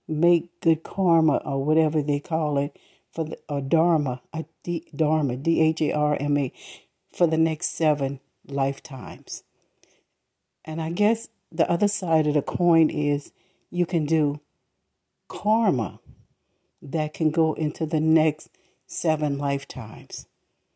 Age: 60-79